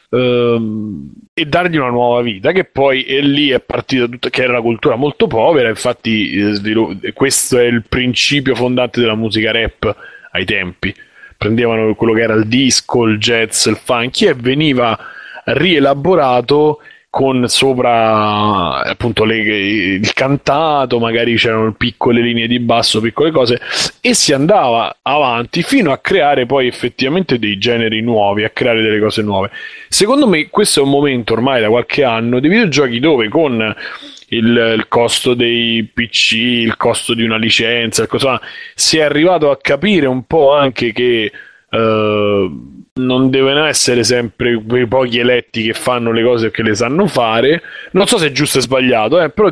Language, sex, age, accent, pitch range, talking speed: Italian, male, 30-49, native, 110-140 Hz, 160 wpm